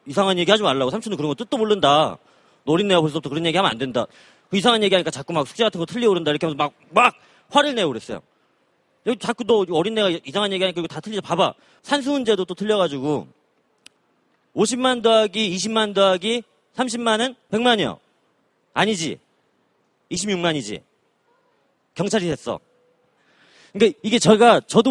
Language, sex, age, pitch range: Korean, male, 40-59, 155-215 Hz